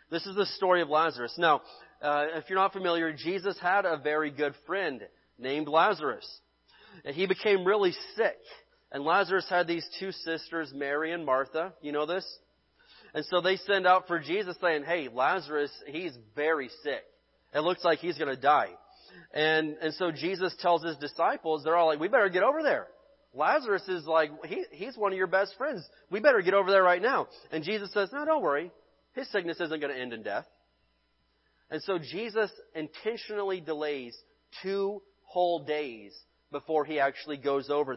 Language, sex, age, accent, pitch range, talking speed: English, male, 30-49, American, 145-190 Hz, 180 wpm